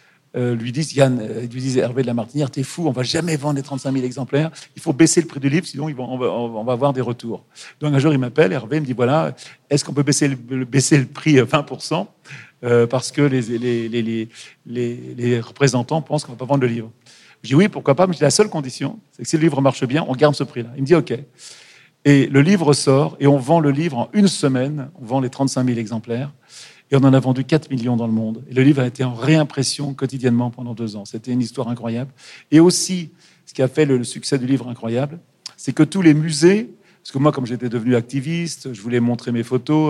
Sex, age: male, 50-69